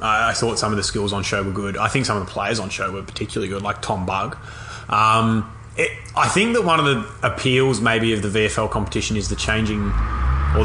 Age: 20-39